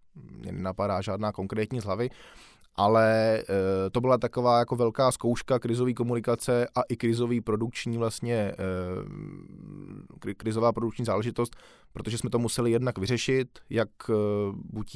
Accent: native